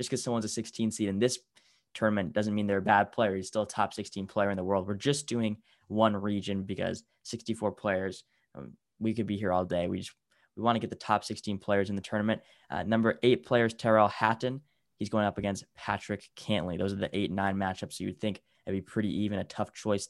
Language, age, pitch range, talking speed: English, 10-29, 95-110 Hz, 240 wpm